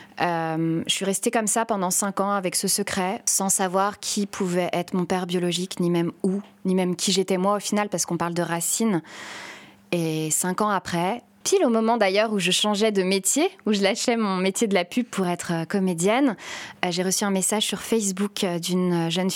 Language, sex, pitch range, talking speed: French, female, 175-210 Hz, 210 wpm